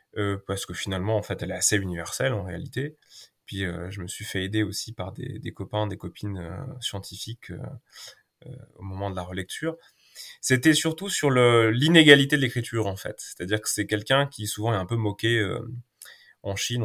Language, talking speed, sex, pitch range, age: French, 205 wpm, male, 100-125 Hz, 20-39